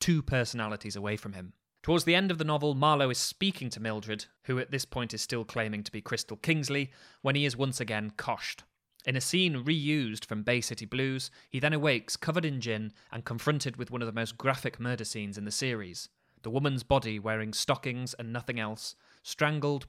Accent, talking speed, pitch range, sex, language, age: British, 210 wpm, 110-140 Hz, male, English, 20-39